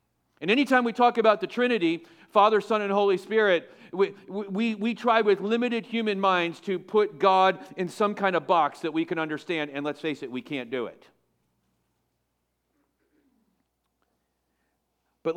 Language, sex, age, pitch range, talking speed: English, male, 40-59, 130-195 Hz, 155 wpm